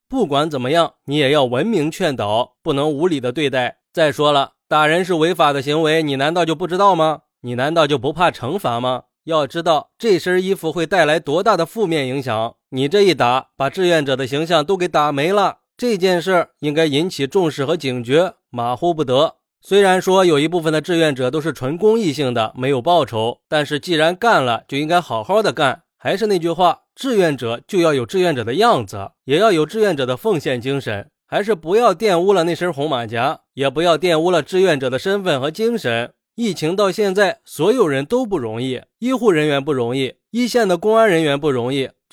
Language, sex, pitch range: Chinese, male, 135-190 Hz